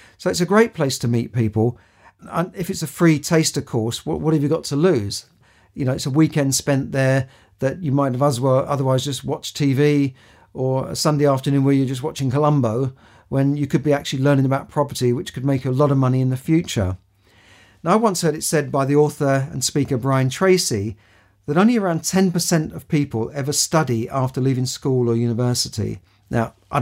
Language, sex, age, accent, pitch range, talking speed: English, male, 50-69, British, 120-145 Hz, 210 wpm